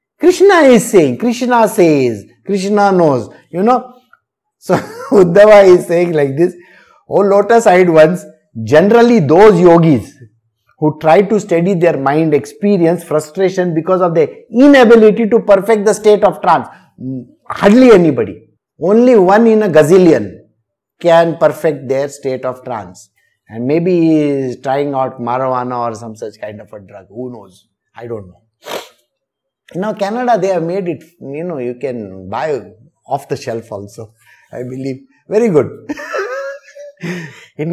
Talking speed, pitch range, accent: 145 wpm, 140-220 Hz, Indian